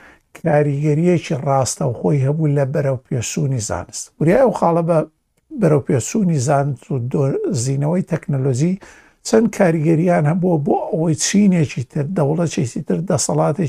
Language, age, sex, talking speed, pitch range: Arabic, 60-79, male, 75 wpm, 135-165 Hz